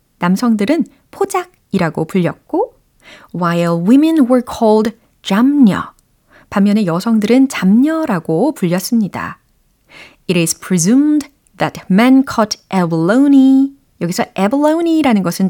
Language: Korean